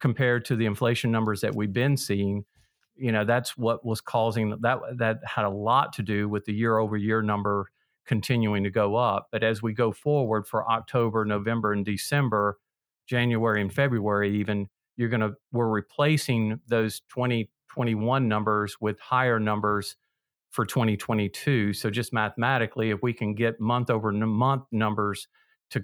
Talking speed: 165 wpm